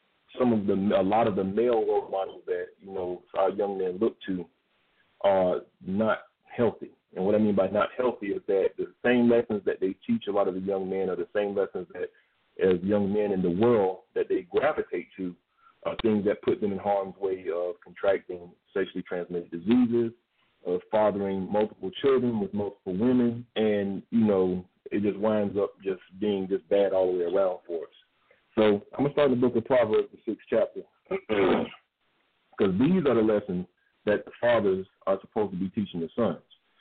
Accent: American